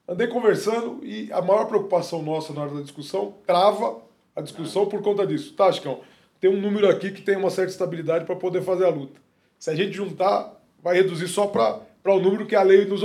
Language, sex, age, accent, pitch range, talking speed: Portuguese, male, 20-39, Brazilian, 160-200 Hz, 215 wpm